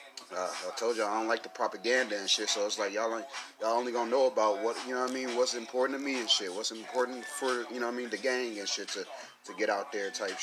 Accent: American